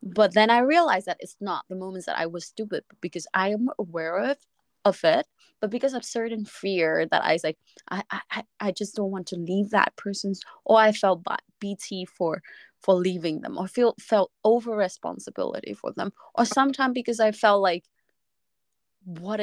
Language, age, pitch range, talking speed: Vietnamese, 20-39, 190-240 Hz, 190 wpm